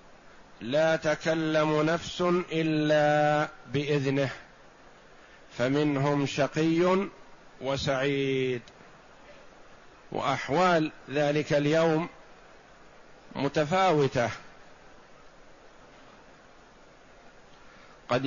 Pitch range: 140-155 Hz